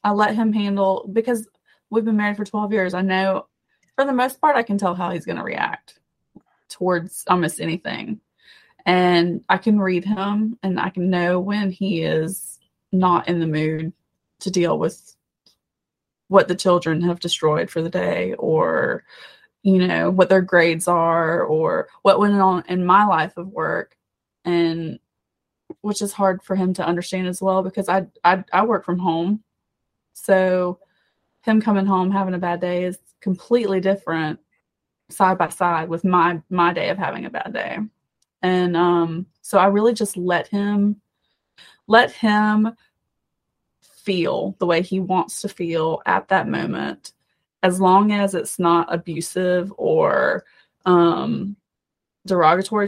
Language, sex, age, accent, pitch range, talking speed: English, female, 20-39, American, 175-210 Hz, 160 wpm